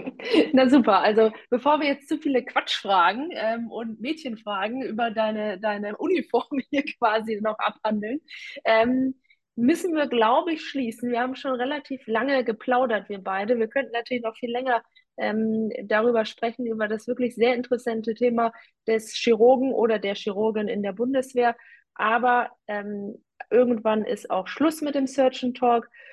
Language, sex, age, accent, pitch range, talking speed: German, female, 20-39, German, 215-250 Hz, 155 wpm